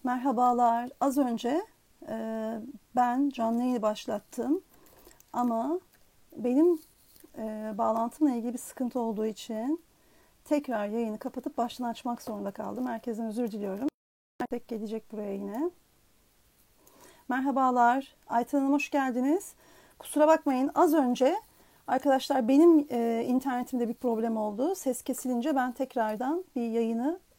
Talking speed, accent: 105 wpm, native